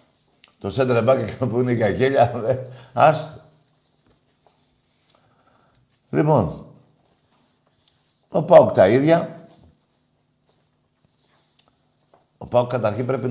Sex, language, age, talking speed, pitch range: male, Greek, 60-79, 80 wpm, 120-145 Hz